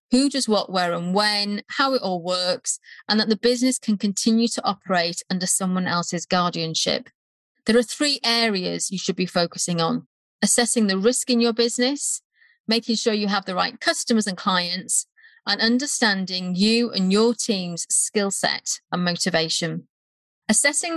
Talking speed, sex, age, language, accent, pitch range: 165 wpm, female, 30-49, English, British, 185-245 Hz